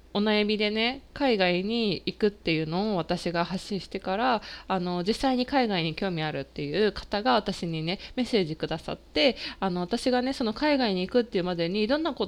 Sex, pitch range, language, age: female, 175-250 Hz, Japanese, 20-39